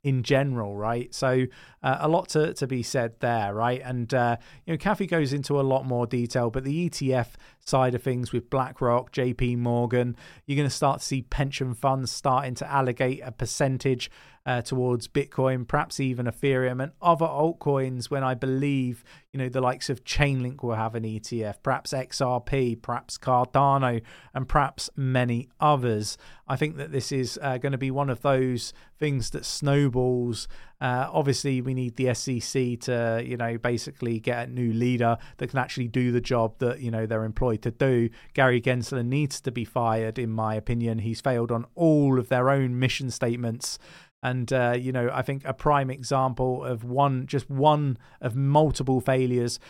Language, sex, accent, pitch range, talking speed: English, male, British, 120-140 Hz, 185 wpm